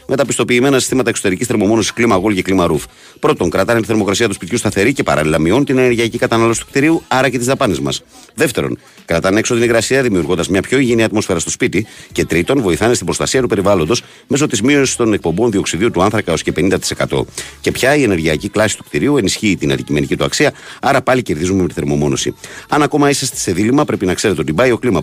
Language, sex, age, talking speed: Greek, male, 50-69, 210 wpm